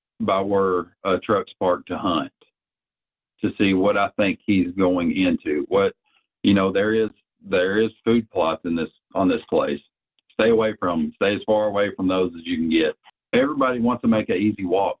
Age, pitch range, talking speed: 50-69, 95-120 Hz, 200 wpm